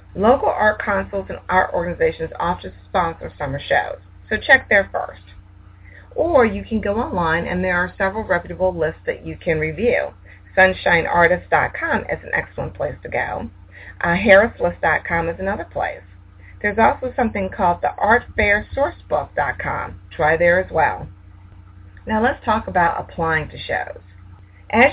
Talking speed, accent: 140 wpm, American